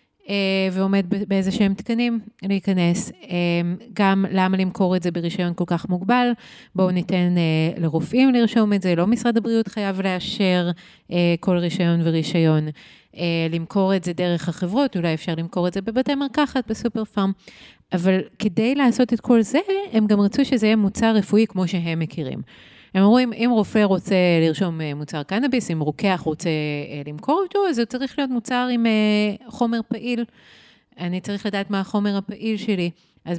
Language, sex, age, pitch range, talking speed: Hebrew, female, 30-49, 170-225 Hz, 155 wpm